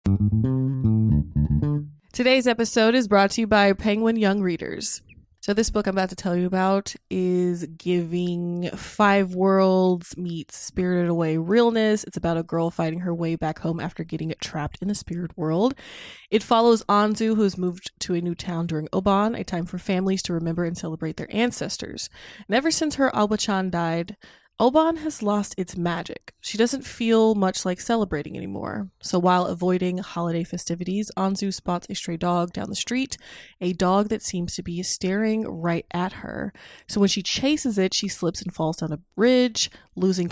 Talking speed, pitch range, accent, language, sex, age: 175 wpm, 170-210 Hz, American, English, female, 20-39